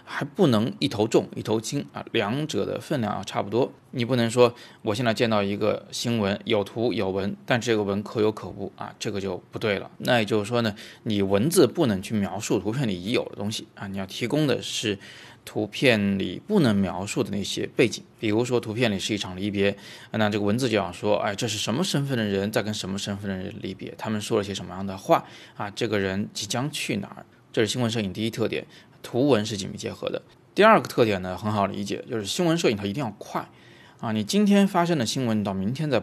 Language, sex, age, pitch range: Chinese, male, 20-39, 100-120 Hz